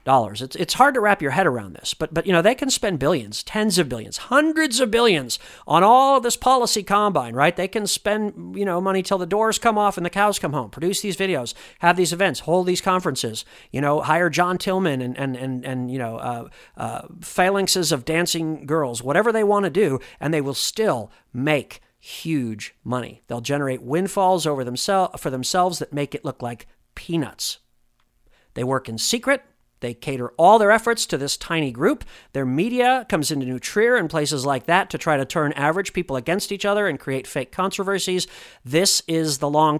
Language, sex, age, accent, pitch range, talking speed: English, male, 50-69, American, 135-195 Hz, 205 wpm